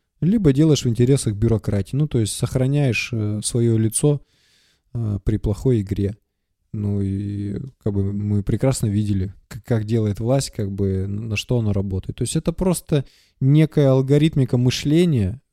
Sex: male